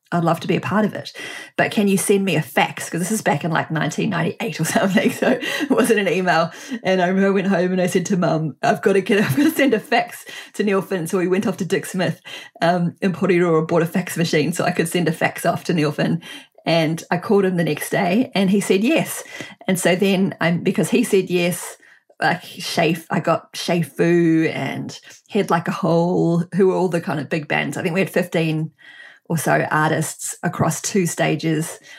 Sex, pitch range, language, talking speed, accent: female, 165-195 Hz, English, 230 wpm, Australian